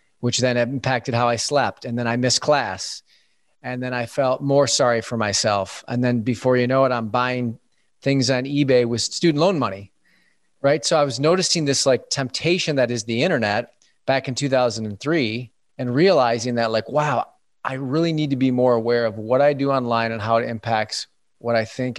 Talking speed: 200 wpm